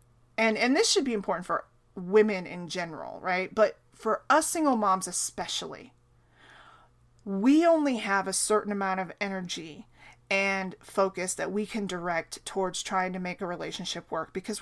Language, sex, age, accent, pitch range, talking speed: English, female, 30-49, American, 190-225 Hz, 160 wpm